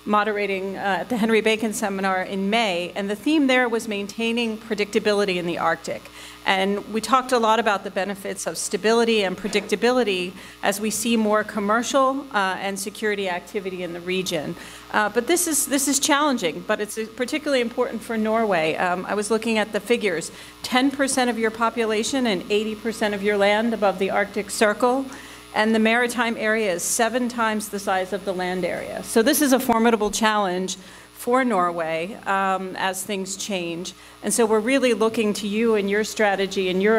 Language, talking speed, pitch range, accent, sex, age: English, 185 wpm, 195-230 Hz, American, female, 40-59